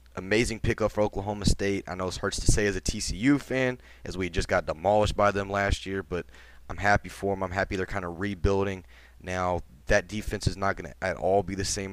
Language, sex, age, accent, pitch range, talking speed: English, male, 20-39, American, 90-100 Hz, 235 wpm